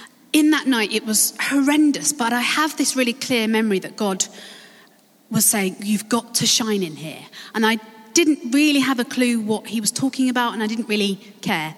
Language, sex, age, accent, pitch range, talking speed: English, female, 30-49, British, 195-245 Hz, 205 wpm